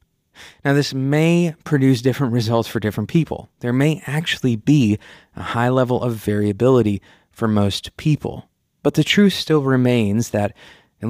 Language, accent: English, American